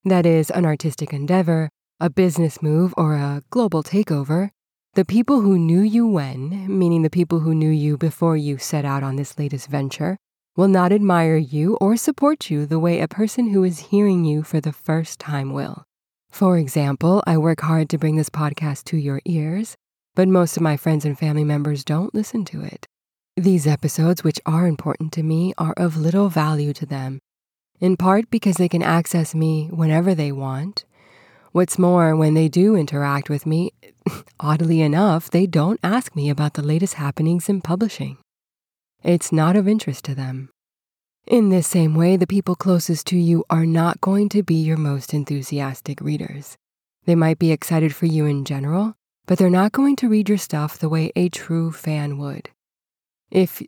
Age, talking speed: 20-39, 185 wpm